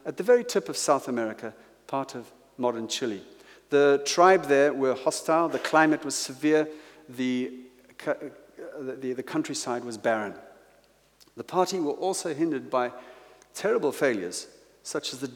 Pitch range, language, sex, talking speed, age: 125-155 Hz, English, male, 145 wpm, 50-69